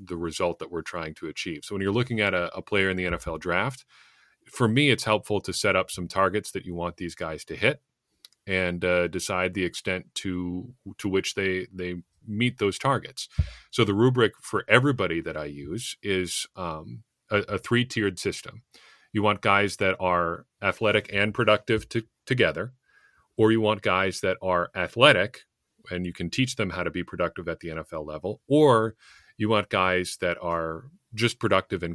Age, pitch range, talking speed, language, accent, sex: 40-59, 85-105 Hz, 190 wpm, English, American, male